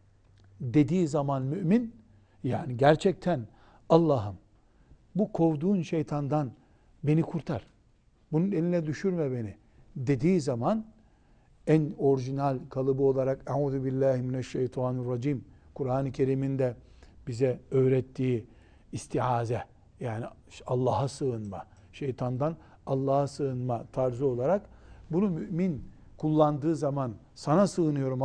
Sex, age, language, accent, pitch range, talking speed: male, 60-79, Turkish, native, 125-175 Hz, 90 wpm